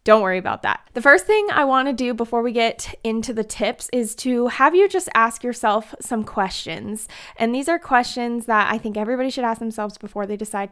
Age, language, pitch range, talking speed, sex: 20-39, English, 200-255 Hz, 220 wpm, female